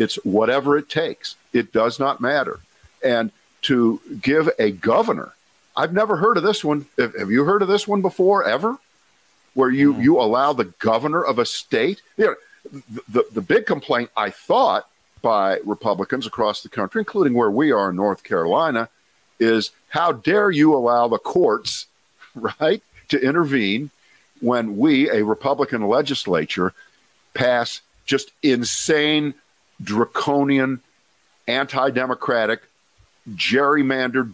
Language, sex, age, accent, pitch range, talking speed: English, male, 50-69, American, 115-185 Hz, 135 wpm